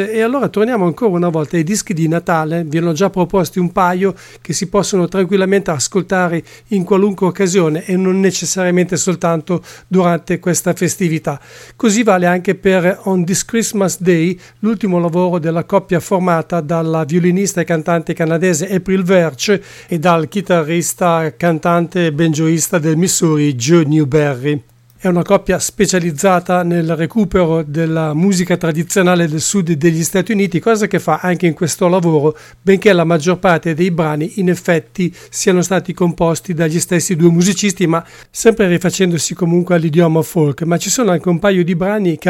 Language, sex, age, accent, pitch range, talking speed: English, male, 50-69, Italian, 165-190 Hz, 160 wpm